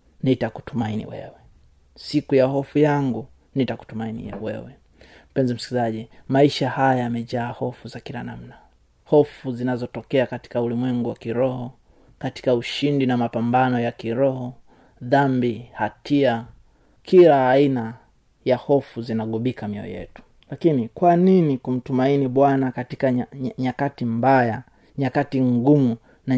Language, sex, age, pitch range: Swahili, male, 30-49, 120-140 Hz